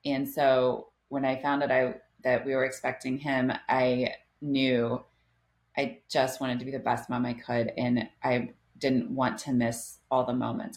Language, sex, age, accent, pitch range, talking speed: English, female, 30-49, American, 125-140 Hz, 185 wpm